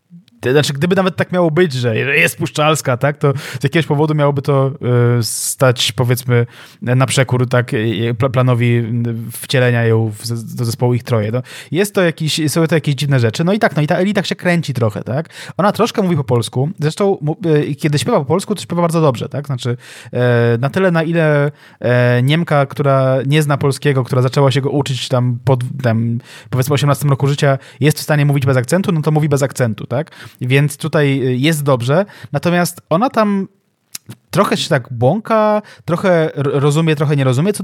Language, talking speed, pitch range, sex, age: Polish, 180 wpm, 135-175 Hz, male, 20-39